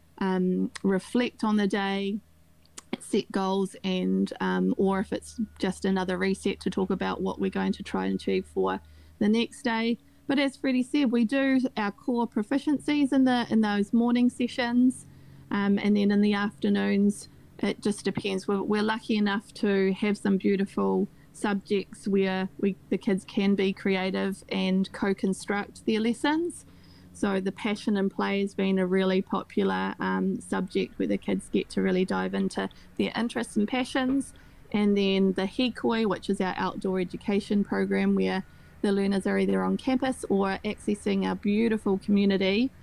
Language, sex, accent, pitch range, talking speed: Czech, female, Australian, 190-215 Hz, 165 wpm